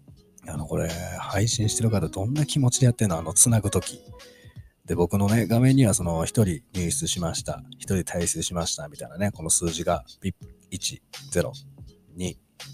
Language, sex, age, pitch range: Japanese, male, 40-59, 85-120 Hz